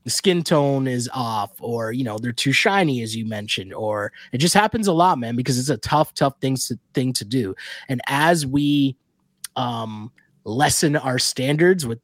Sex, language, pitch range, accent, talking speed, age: male, English, 130-175 Hz, American, 195 wpm, 20-39